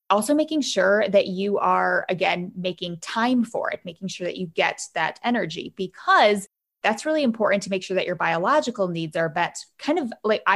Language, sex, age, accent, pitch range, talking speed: English, female, 20-39, American, 185-245 Hz, 195 wpm